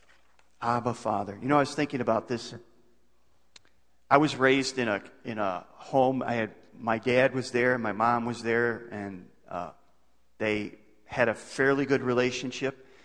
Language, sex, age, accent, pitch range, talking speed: English, male, 40-59, American, 115-135 Hz, 160 wpm